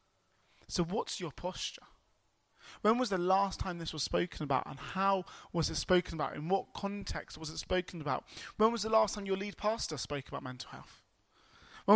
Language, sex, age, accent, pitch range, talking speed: English, male, 20-39, British, 155-195 Hz, 195 wpm